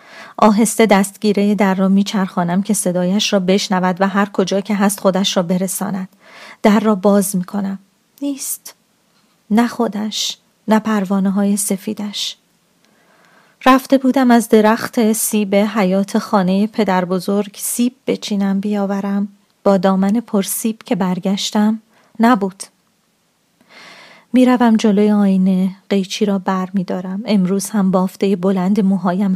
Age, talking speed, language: 30-49, 115 wpm, Persian